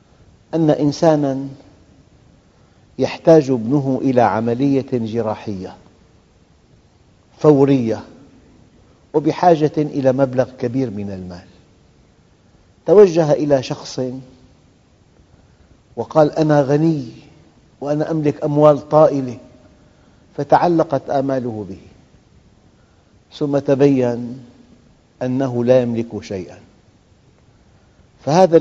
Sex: male